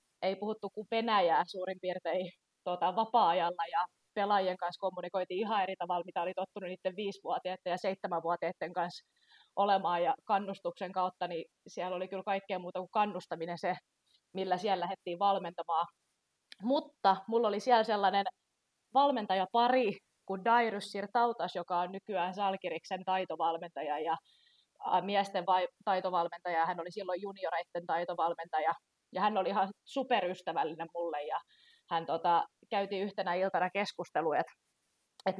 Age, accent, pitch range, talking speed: 20-39, native, 175-205 Hz, 130 wpm